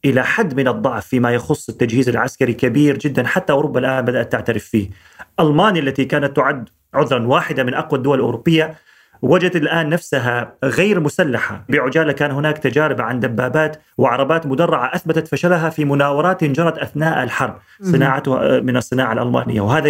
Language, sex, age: Arabic, male, 30-49